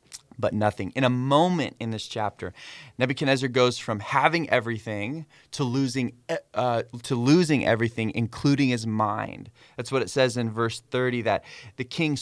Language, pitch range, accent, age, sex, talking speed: English, 105-125 Hz, American, 20-39, male, 155 wpm